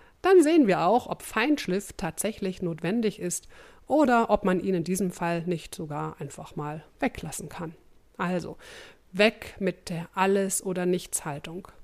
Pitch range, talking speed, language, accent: 175-225 Hz, 135 wpm, German, German